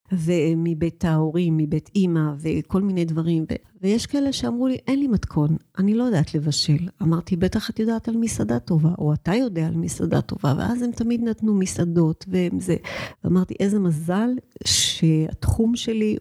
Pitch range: 165-195 Hz